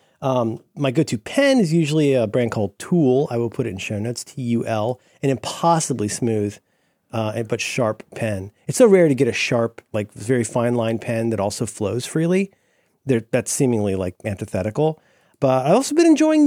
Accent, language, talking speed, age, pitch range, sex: American, English, 180 wpm, 40-59, 110-160 Hz, male